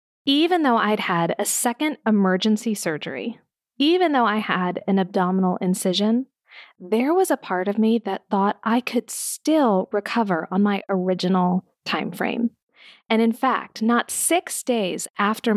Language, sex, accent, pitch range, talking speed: English, female, American, 190-245 Hz, 145 wpm